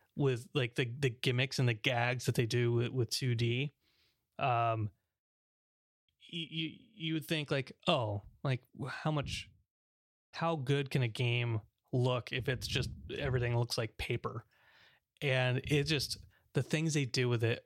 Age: 30-49